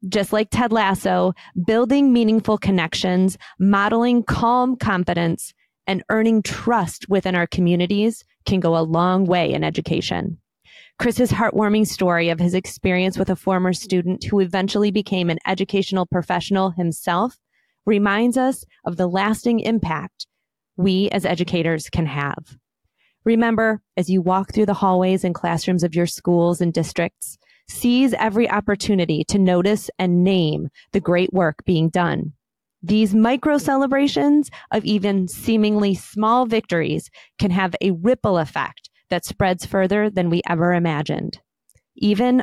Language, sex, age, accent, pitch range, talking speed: English, female, 30-49, American, 175-215 Hz, 140 wpm